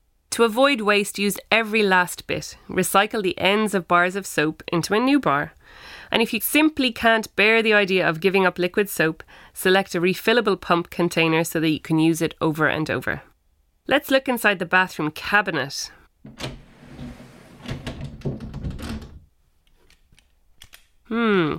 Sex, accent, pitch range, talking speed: female, Irish, 160-210 Hz, 145 wpm